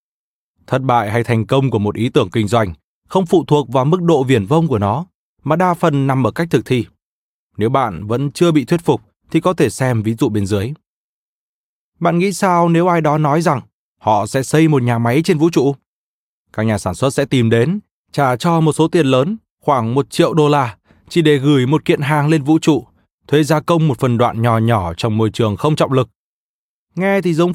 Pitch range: 115-160 Hz